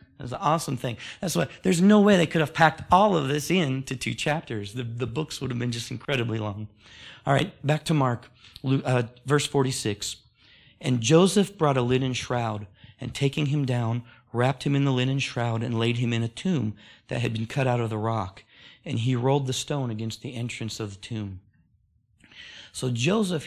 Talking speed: 200 wpm